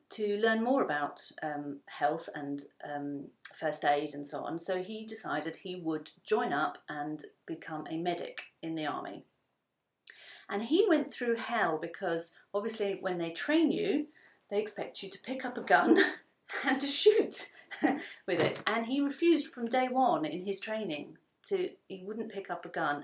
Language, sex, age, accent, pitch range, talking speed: English, female, 40-59, British, 150-220 Hz, 175 wpm